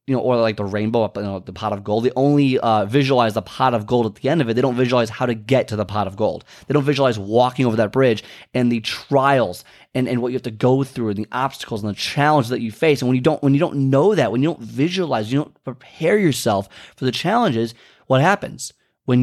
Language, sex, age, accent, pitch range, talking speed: English, male, 30-49, American, 115-145 Hz, 270 wpm